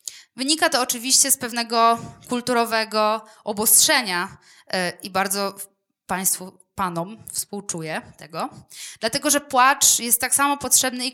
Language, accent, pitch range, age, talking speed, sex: Polish, native, 200-260 Hz, 20-39, 115 wpm, female